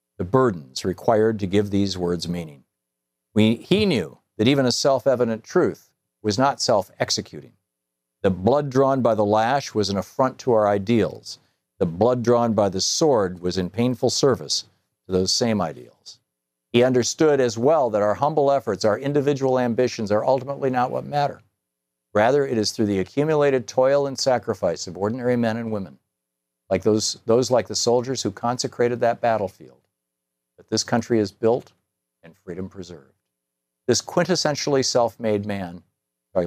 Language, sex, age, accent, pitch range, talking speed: English, male, 50-69, American, 90-120 Hz, 160 wpm